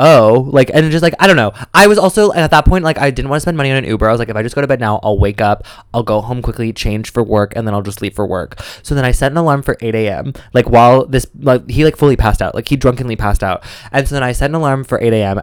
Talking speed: 325 wpm